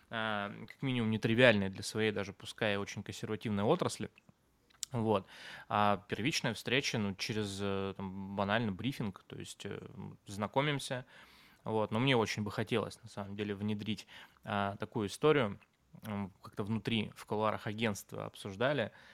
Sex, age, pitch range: male, 20-39, 100-115 Hz